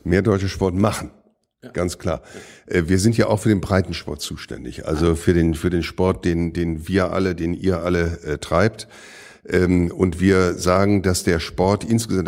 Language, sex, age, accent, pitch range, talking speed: German, male, 50-69, German, 90-105 Hz, 180 wpm